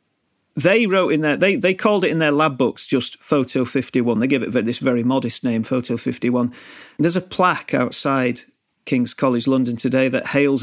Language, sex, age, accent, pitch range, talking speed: English, male, 40-59, British, 125-155 Hz, 205 wpm